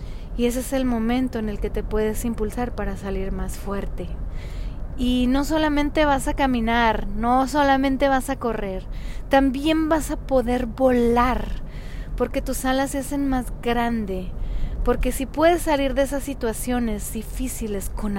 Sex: female